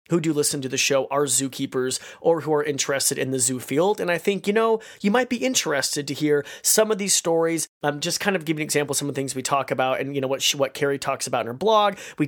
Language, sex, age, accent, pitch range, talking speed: English, male, 30-49, American, 140-185 Hz, 295 wpm